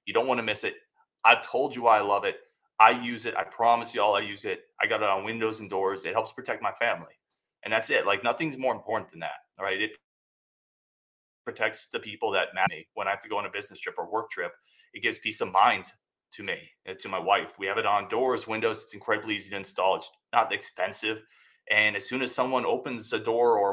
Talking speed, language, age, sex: 245 wpm, English, 30-49, male